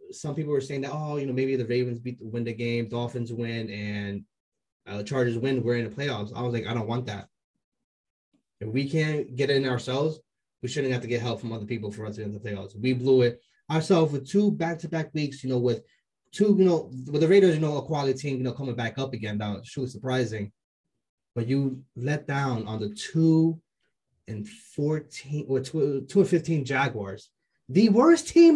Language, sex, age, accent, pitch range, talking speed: English, male, 20-39, American, 120-155 Hz, 225 wpm